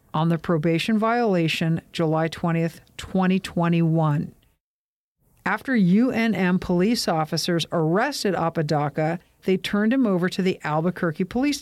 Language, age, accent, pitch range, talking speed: English, 50-69, American, 165-215 Hz, 110 wpm